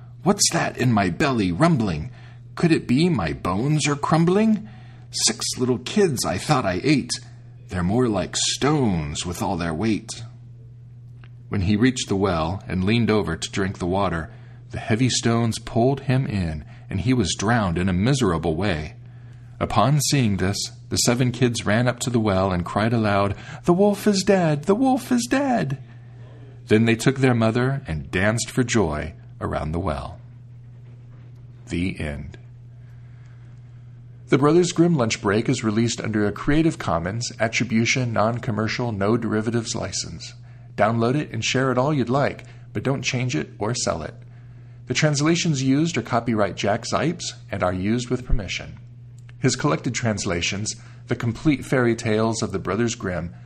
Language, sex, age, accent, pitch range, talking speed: English, male, 40-59, American, 110-125 Hz, 160 wpm